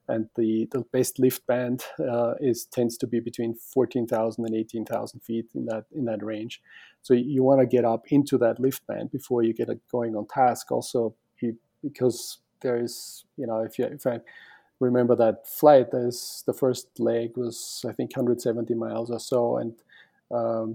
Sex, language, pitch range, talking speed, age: male, English, 115-130 Hz, 185 wpm, 40-59